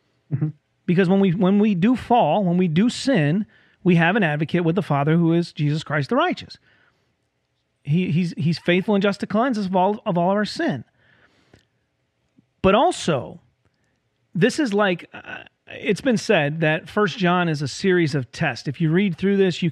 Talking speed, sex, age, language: 190 wpm, male, 40-59, English